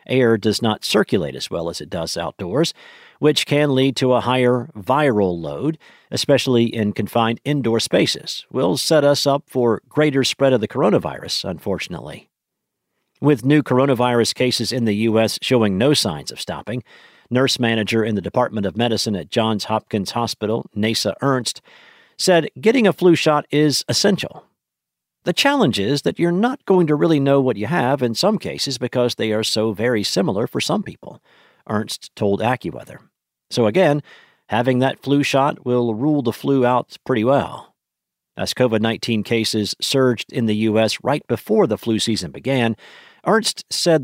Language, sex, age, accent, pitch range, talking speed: English, male, 50-69, American, 110-150 Hz, 165 wpm